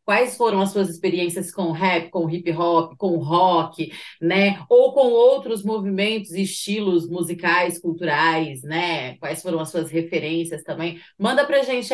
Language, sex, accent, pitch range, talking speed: Portuguese, female, Brazilian, 190-255 Hz, 155 wpm